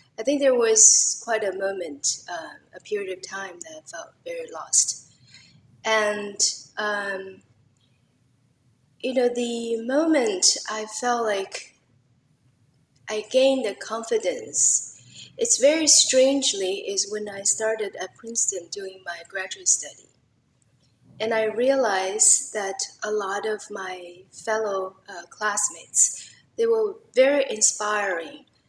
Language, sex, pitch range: English, female, 190-245 Hz